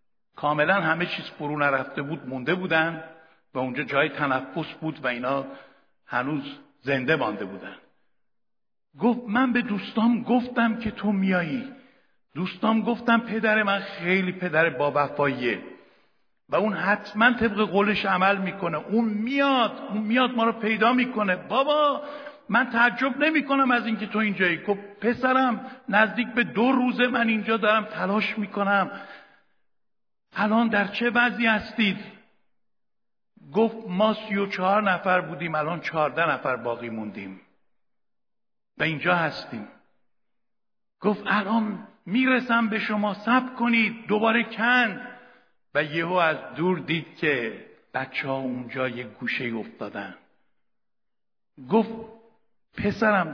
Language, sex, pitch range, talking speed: Persian, male, 165-230 Hz, 125 wpm